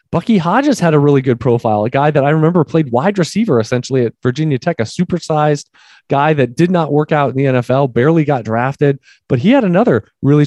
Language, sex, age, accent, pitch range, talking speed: English, male, 20-39, American, 135-175 Hz, 220 wpm